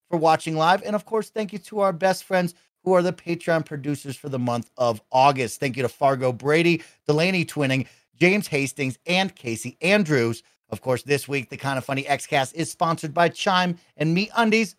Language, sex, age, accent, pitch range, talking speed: English, male, 40-59, American, 130-180 Hz, 205 wpm